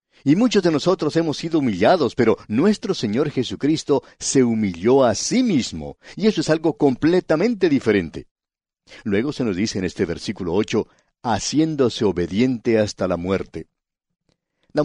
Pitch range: 105-150 Hz